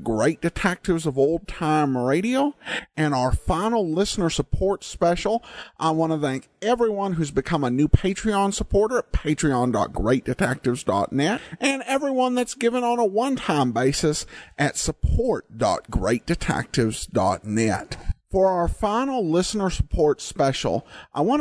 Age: 50-69